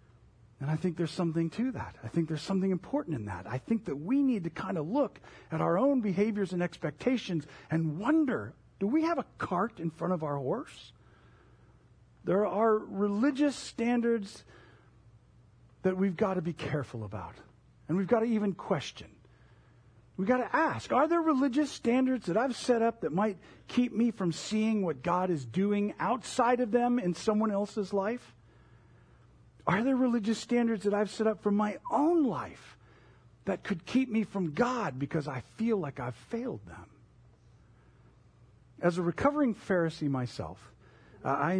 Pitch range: 130-220 Hz